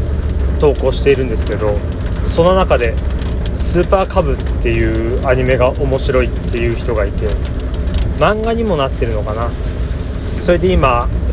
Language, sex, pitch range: Japanese, male, 75-115 Hz